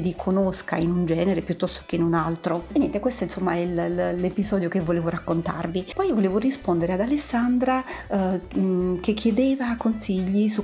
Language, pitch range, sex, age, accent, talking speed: Italian, 175-195 Hz, female, 40-59, native, 165 wpm